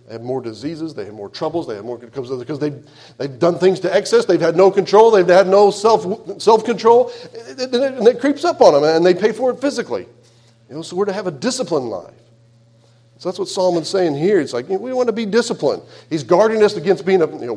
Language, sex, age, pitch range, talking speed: English, male, 40-59, 115-180 Hz, 255 wpm